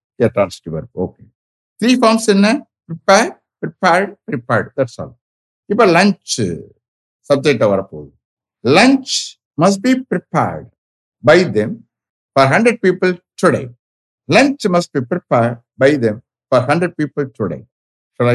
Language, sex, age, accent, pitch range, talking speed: English, male, 60-79, Indian, 120-185 Hz, 115 wpm